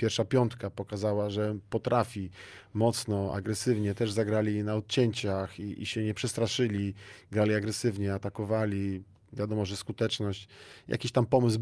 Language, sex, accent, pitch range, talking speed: Polish, male, native, 105-125 Hz, 130 wpm